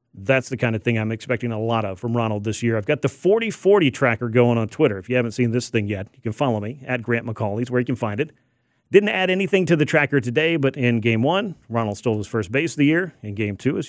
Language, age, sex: English, 40-59, male